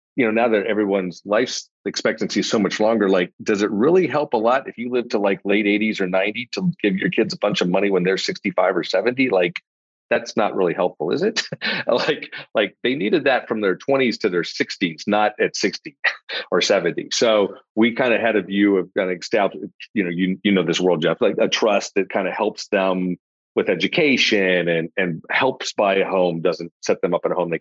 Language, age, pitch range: English, 40-59, 90-115 Hz